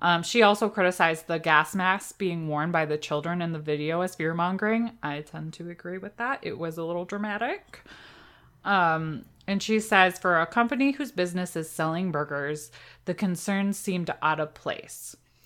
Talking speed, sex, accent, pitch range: 180 wpm, female, American, 165-215 Hz